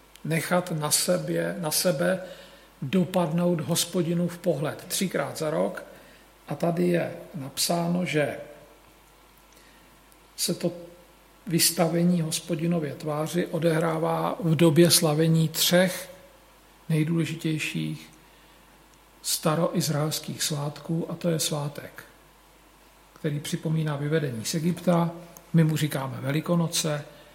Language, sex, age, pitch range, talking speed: Slovak, male, 50-69, 150-170 Hz, 95 wpm